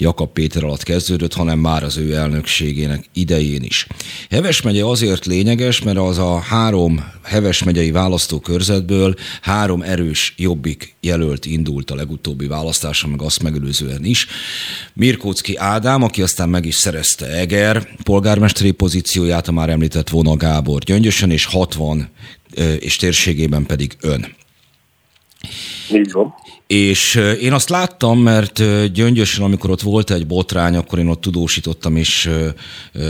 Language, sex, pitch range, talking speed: Hungarian, male, 80-100 Hz, 125 wpm